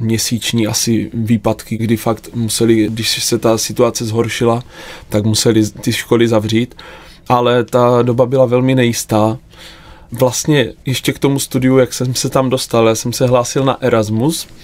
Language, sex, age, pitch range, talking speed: Czech, male, 20-39, 115-130 Hz, 150 wpm